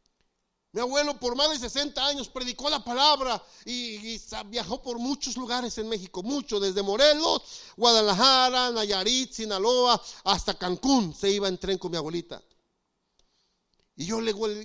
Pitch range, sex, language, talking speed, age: 190-250 Hz, male, Spanish, 155 wpm, 50-69